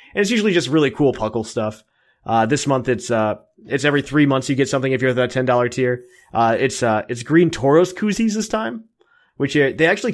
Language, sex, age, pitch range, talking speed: English, male, 20-39, 115-140 Hz, 230 wpm